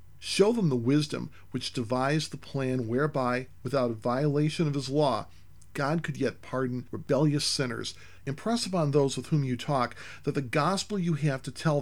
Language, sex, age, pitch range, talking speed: English, male, 40-59, 120-150 Hz, 180 wpm